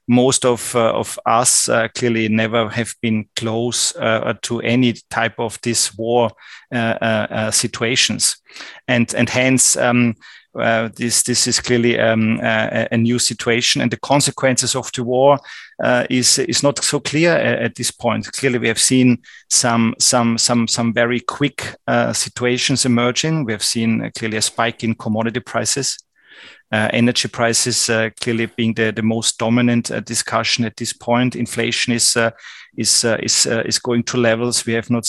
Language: Swedish